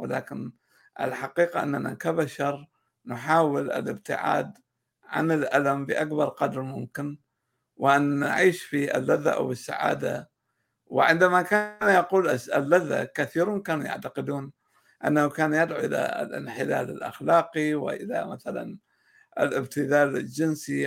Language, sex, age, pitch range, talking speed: Arabic, male, 60-79, 135-165 Hz, 100 wpm